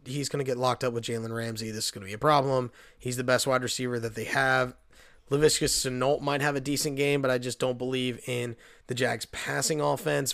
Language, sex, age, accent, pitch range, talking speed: English, male, 30-49, American, 125-145 Hz, 225 wpm